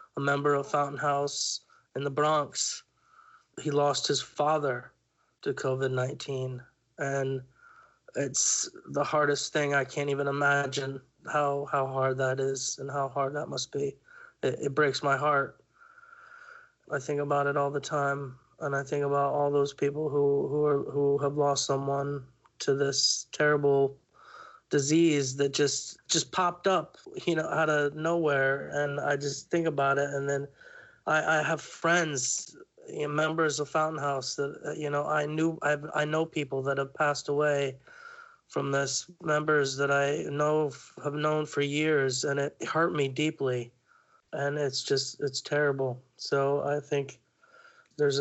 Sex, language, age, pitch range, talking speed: male, English, 20-39, 140-155 Hz, 160 wpm